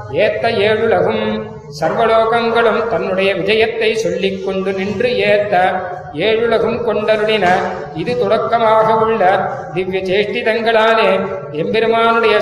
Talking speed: 80 wpm